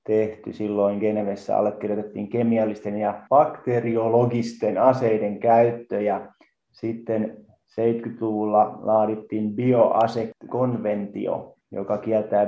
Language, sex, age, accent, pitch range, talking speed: Finnish, male, 30-49, native, 105-115 Hz, 70 wpm